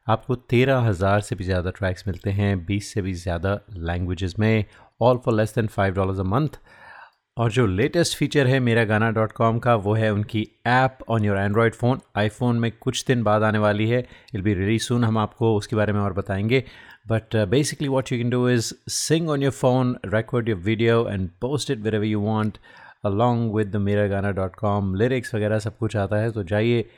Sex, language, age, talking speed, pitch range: male, Hindi, 30-49, 200 wpm, 105-125 Hz